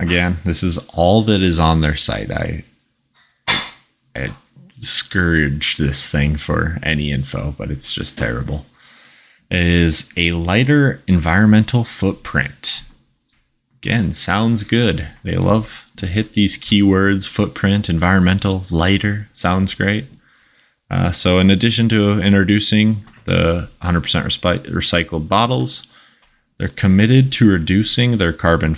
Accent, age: American, 20-39